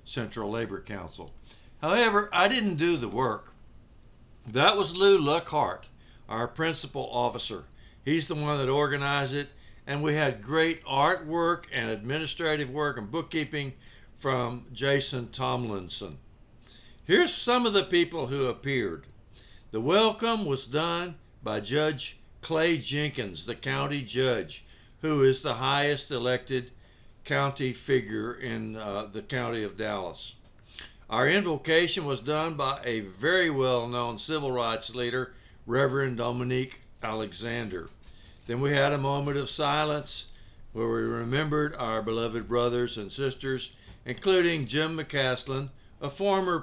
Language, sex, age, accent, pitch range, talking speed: English, male, 60-79, American, 115-150 Hz, 130 wpm